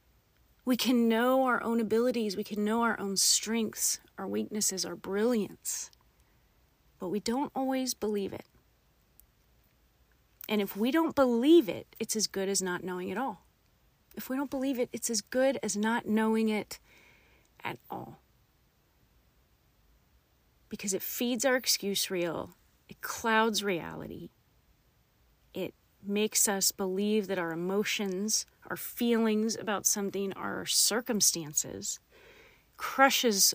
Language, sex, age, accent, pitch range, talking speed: English, female, 30-49, American, 200-275 Hz, 130 wpm